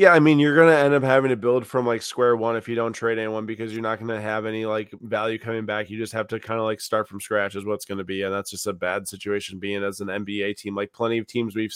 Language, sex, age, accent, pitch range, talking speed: English, male, 20-39, American, 100-120 Hz, 300 wpm